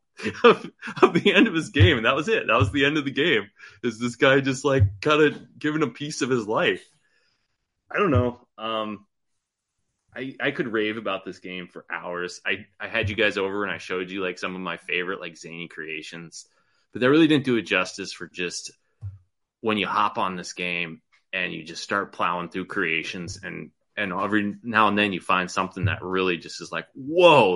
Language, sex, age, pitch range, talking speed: English, male, 20-39, 90-115 Hz, 215 wpm